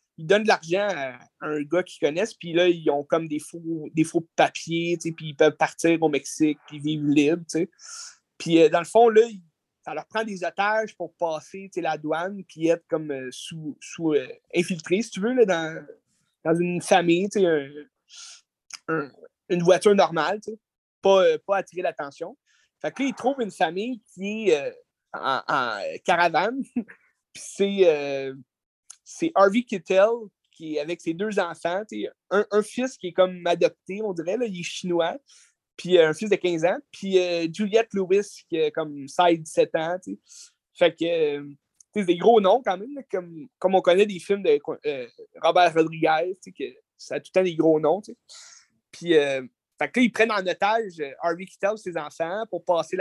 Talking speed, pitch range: 195 wpm, 160-215 Hz